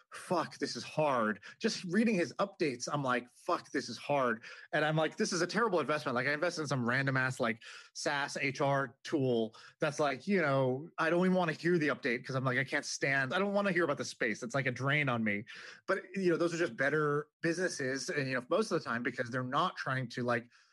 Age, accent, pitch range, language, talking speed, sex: 30-49, American, 130-160 Hz, English, 250 wpm, male